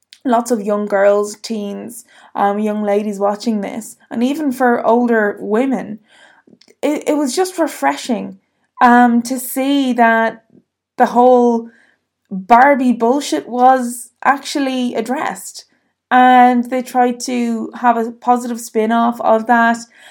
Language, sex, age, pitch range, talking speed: English, female, 20-39, 225-270 Hz, 125 wpm